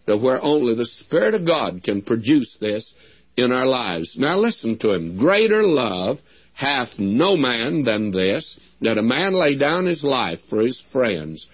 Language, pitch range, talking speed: English, 105-140 Hz, 170 wpm